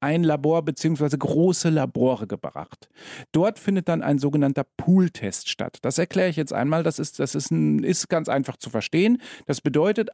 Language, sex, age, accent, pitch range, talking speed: German, male, 40-59, German, 130-175 Hz, 180 wpm